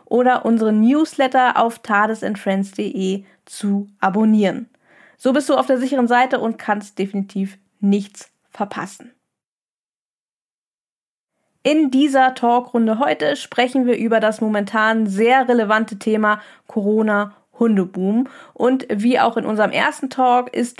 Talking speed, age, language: 115 wpm, 20-39, German